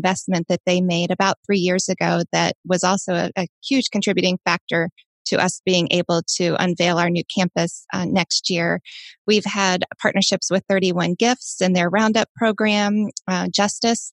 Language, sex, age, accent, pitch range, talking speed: English, female, 20-39, American, 185-210 Hz, 170 wpm